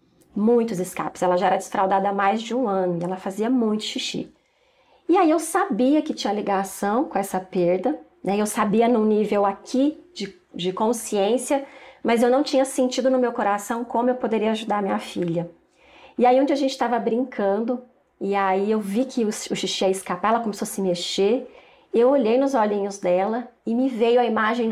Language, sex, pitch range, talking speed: Portuguese, female, 195-245 Hz, 200 wpm